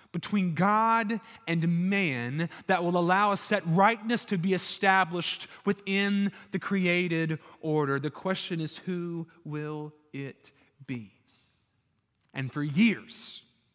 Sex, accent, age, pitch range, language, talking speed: male, American, 30-49, 175-235 Hz, English, 120 wpm